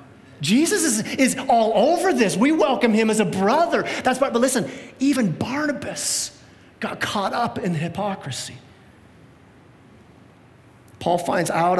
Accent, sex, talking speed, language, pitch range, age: American, male, 135 wpm, English, 160-220 Hz, 30-49